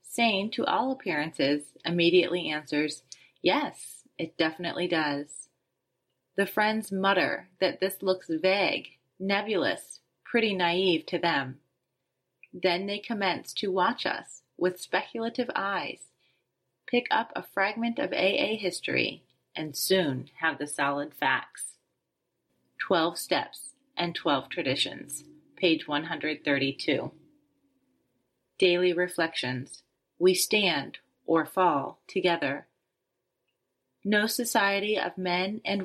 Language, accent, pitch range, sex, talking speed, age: English, American, 160-200 Hz, female, 105 wpm, 30-49